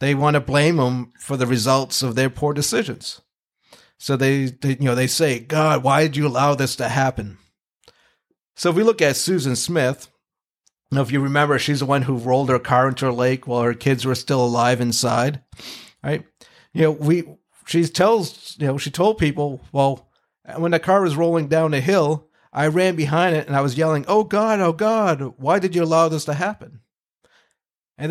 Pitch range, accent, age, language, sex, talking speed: 135-175 Hz, American, 50-69, English, male, 200 wpm